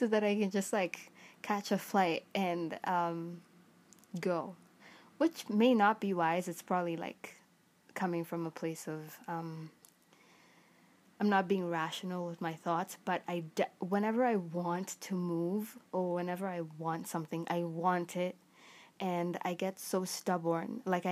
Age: 20-39